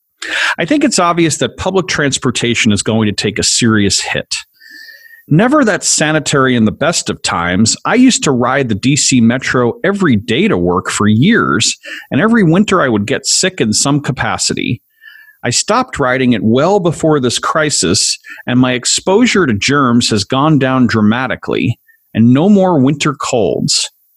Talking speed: 165 wpm